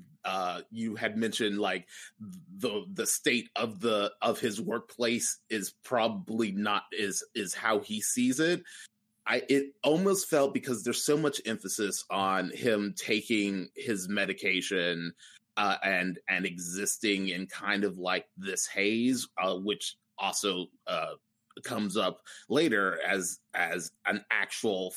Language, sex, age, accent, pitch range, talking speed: English, male, 30-49, American, 100-140 Hz, 135 wpm